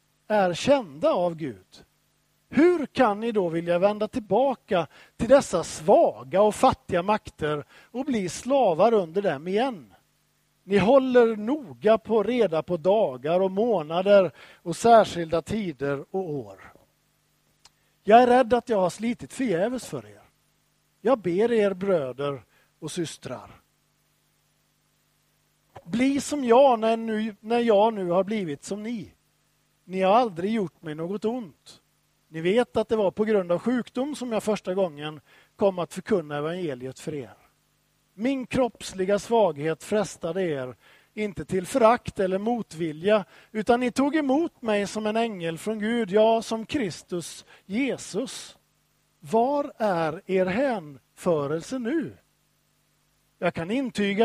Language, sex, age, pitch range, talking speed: Swedish, male, 50-69, 175-235 Hz, 135 wpm